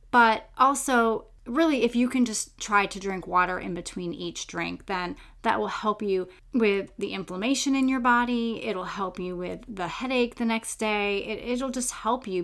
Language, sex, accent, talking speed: English, female, American, 190 wpm